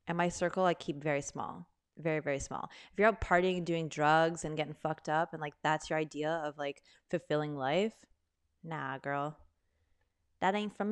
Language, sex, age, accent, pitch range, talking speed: English, female, 20-39, American, 150-185 Hz, 190 wpm